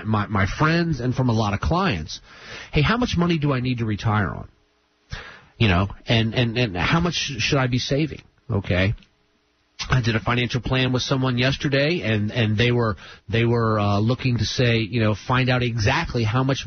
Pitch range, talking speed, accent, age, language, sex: 105-140 Hz, 200 wpm, American, 40-59, English, male